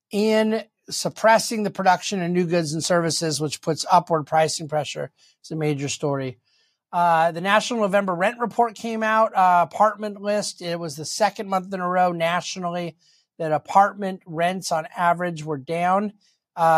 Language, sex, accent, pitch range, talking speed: English, male, American, 160-195 Hz, 165 wpm